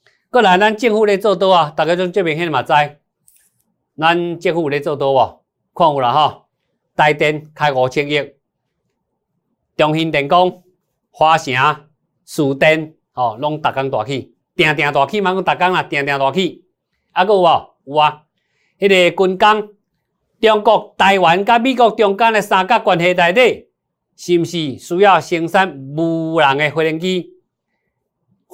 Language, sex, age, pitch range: Chinese, male, 50-69, 145-185 Hz